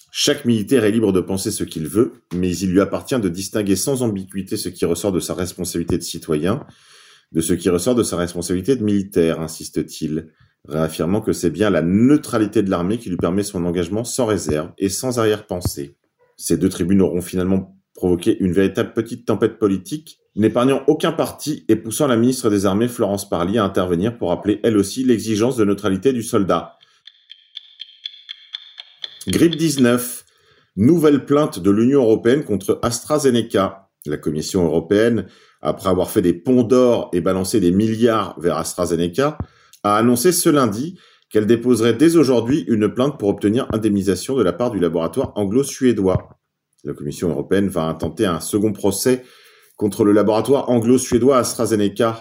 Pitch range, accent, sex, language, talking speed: 90-120 Hz, French, male, French, 165 wpm